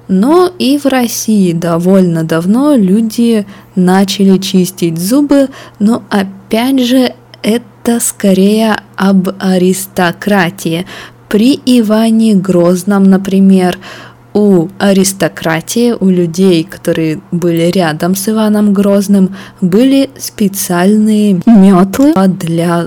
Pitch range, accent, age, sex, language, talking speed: 180-220 Hz, native, 20-39, female, Russian, 90 wpm